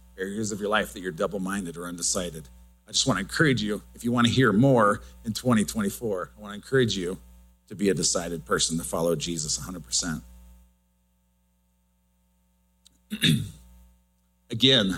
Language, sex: English, male